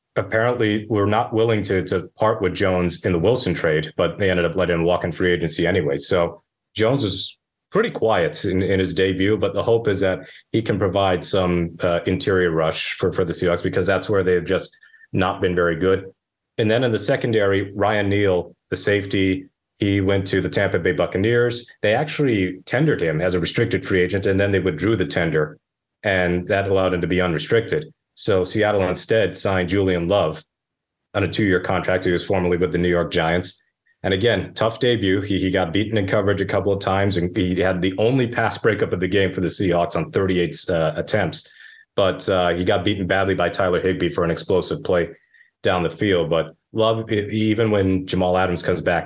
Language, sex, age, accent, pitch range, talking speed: English, male, 30-49, American, 90-105 Hz, 210 wpm